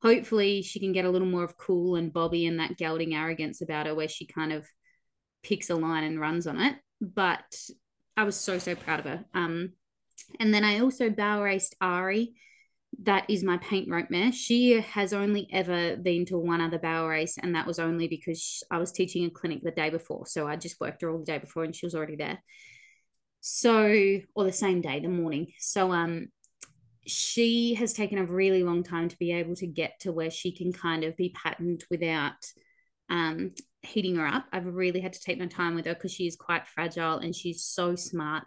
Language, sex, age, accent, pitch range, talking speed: English, female, 20-39, Australian, 165-195 Hz, 215 wpm